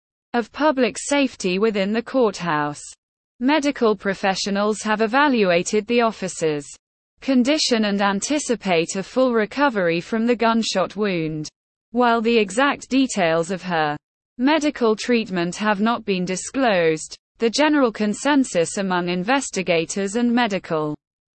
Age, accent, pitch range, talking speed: 20-39, British, 180-245 Hz, 115 wpm